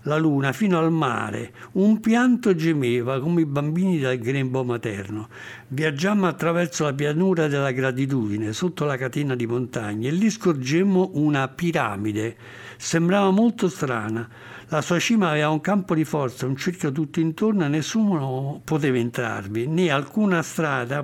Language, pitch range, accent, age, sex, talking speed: Italian, 125-165 Hz, native, 60-79, male, 150 wpm